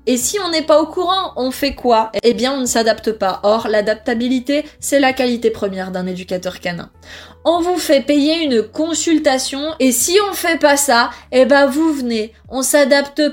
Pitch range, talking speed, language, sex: 210-275 Hz, 195 wpm, French, female